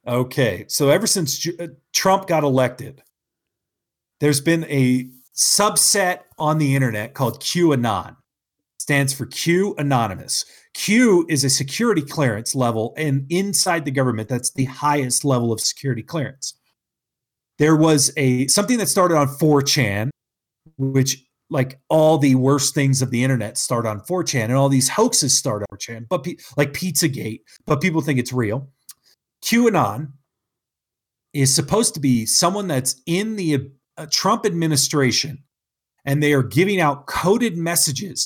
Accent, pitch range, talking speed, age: American, 125-160 Hz, 145 wpm, 40-59